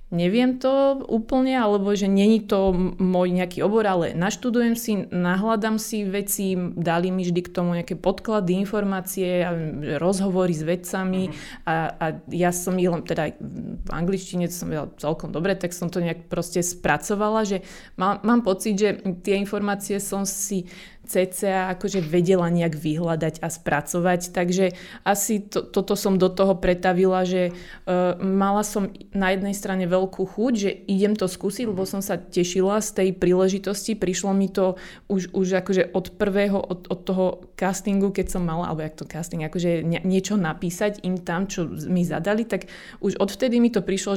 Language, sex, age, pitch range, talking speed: Slovak, female, 20-39, 180-200 Hz, 165 wpm